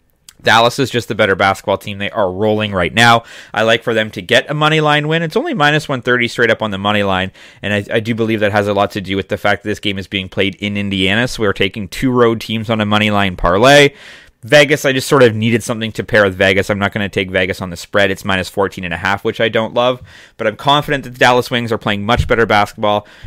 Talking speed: 275 wpm